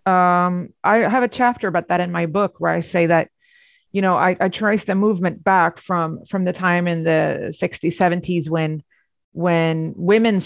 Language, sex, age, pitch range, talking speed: English, female, 30-49, 170-200 Hz, 190 wpm